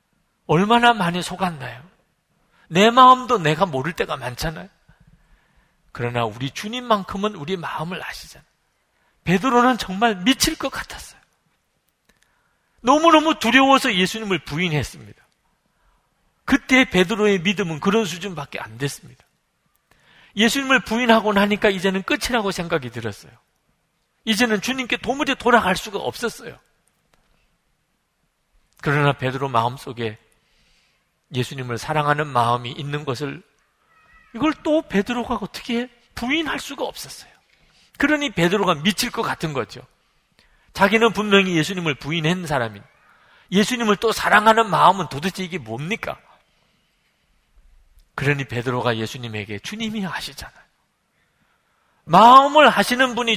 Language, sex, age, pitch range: Korean, male, 40-59, 145-240 Hz